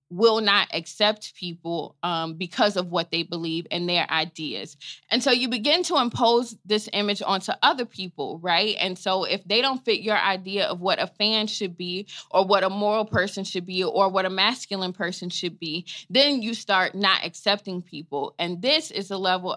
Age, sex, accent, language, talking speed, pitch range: 20-39, female, American, English, 195 wpm, 180-235 Hz